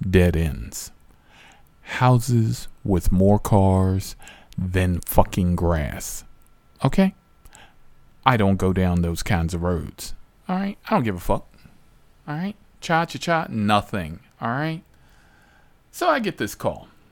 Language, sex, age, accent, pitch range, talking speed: English, male, 40-59, American, 90-120 Hz, 135 wpm